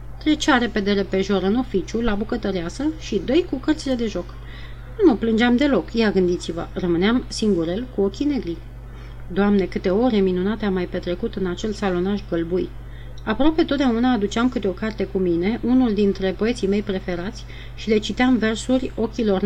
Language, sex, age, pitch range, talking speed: Romanian, female, 30-49, 185-240 Hz, 165 wpm